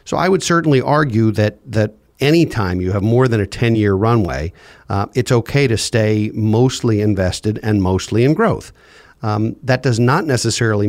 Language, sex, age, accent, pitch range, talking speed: English, male, 50-69, American, 105-135 Hz, 175 wpm